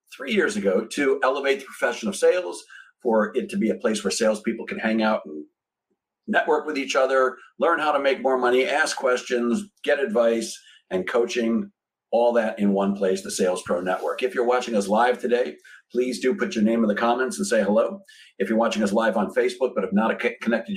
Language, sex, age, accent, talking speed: English, male, 50-69, American, 215 wpm